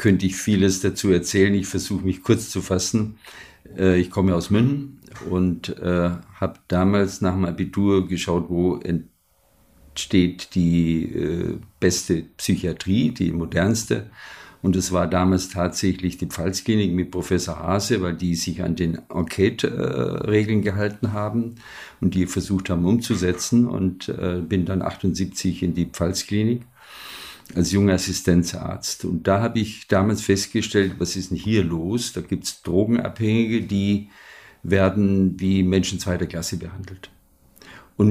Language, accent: German, German